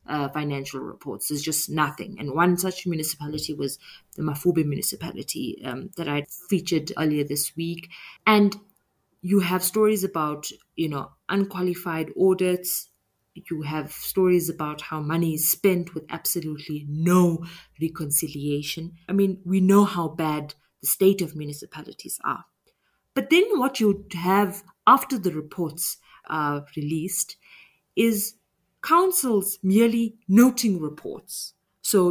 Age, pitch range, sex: 30-49, 155-195 Hz, female